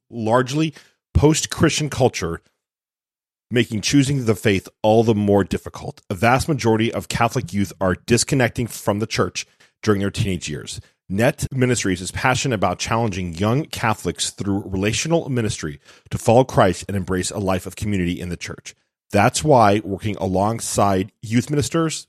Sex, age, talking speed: male, 40-59, 150 wpm